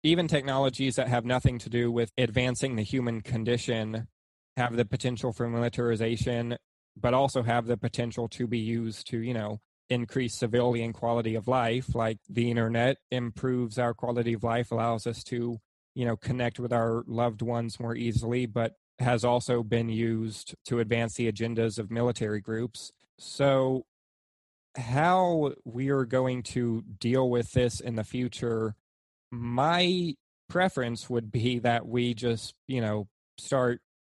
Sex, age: male, 20-39